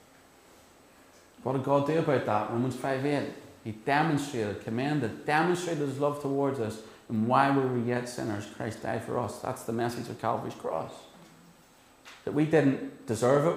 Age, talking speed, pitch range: 40-59, 170 wpm, 100-135 Hz